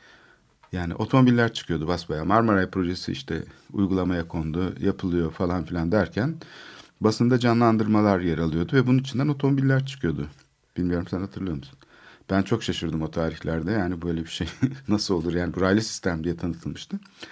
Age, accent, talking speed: 60-79, native, 145 wpm